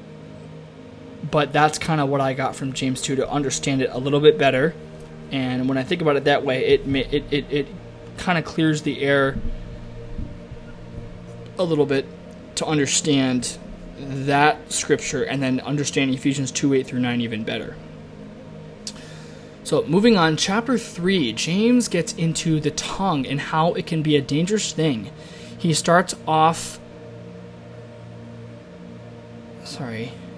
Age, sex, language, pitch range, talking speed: 20-39, male, English, 135-165 Hz, 145 wpm